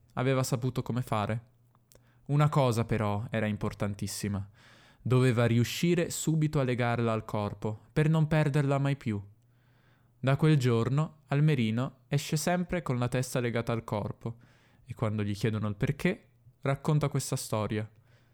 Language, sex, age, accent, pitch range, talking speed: Italian, male, 10-29, native, 115-140 Hz, 135 wpm